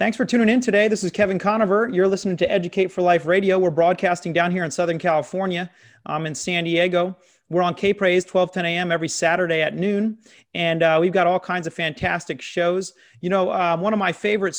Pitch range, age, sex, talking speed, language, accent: 165-190 Hz, 30-49, male, 215 wpm, English, American